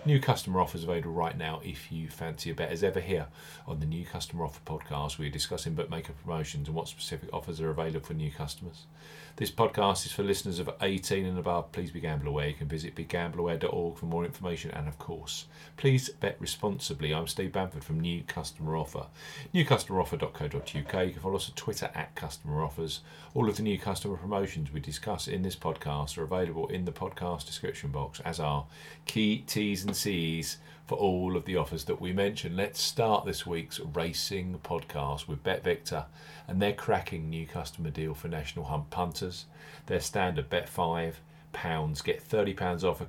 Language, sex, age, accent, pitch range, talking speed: English, male, 40-59, British, 80-100 Hz, 190 wpm